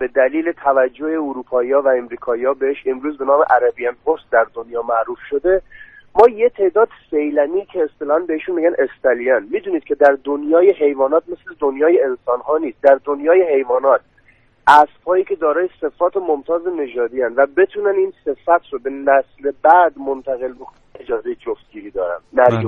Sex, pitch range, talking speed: male, 145-215 Hz, 155 wpm